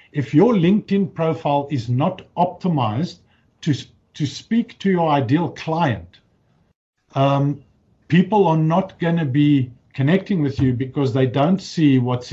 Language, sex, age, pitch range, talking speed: English, male, 50-69, 130-185 Hz, 140 wpm